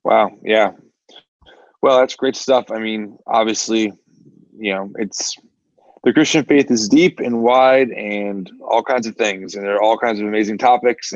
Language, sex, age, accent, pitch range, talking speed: English, male, 20-39, American, 100-125 Hz, 170 wpm